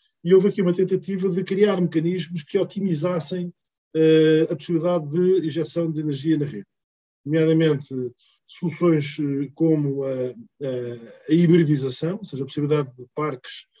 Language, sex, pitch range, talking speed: Portuguese, male, 145-175 Hz, 140 wpm